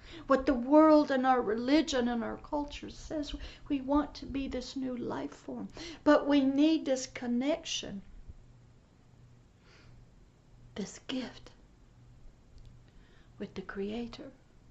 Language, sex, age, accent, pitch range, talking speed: English, female, 60-79, American, 205-275 Hz, 115 wpm